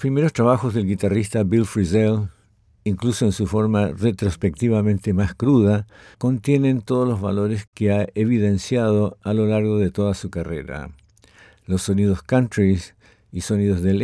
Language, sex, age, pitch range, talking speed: English, male, 50-69, 95-110 Hz, 140 wpm